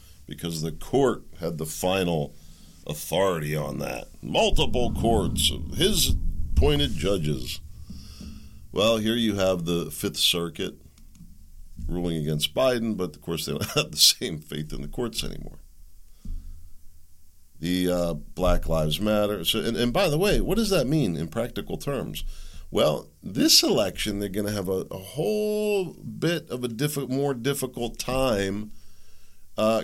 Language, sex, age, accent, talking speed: English, male, 50-69, American, 145 wpm